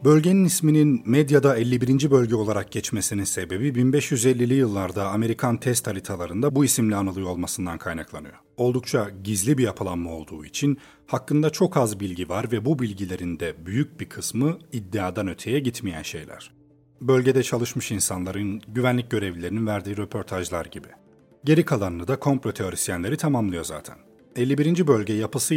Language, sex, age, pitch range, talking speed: Turkish, male, 40-59, 100-130 Hz, 135 wpm